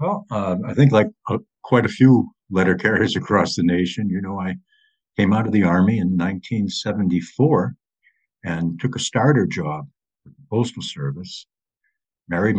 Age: 60-79